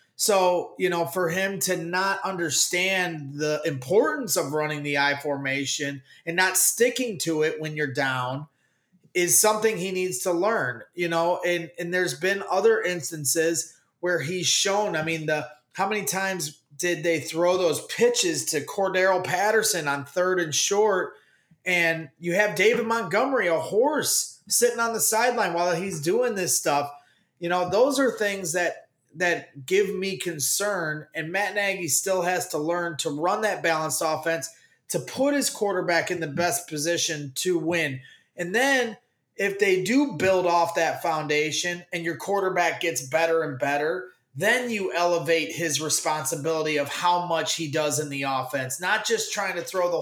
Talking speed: 170 wpm